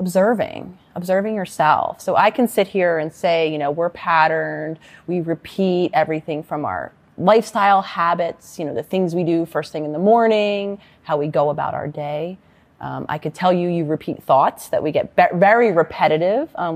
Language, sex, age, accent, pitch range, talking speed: English, female, 30-49, American, 150-190 Hz, 185 wpm